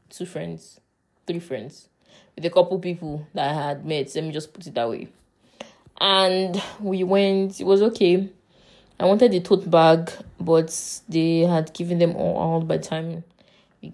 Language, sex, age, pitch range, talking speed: English, female, 20-39, 160-180 Hz, 175 wpm